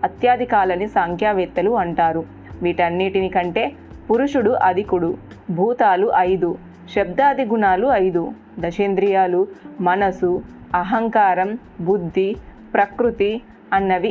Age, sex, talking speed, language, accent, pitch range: 20-39, female, 75 wpm, Telugu, native, 180-225 Hz